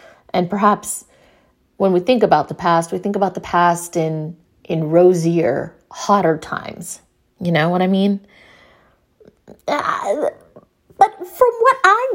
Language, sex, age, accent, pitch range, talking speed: English, female, 30-49, American, 175-220 Hz, 135 wpm